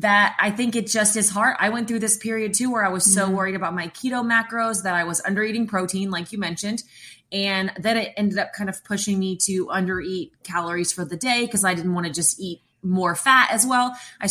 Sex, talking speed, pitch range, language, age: female, 250 wpm, 180-225 Hz, English, 20-39